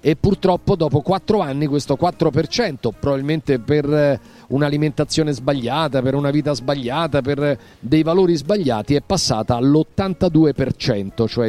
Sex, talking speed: male, 120 wpm